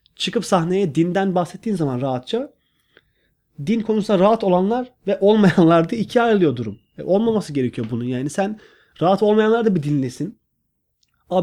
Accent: native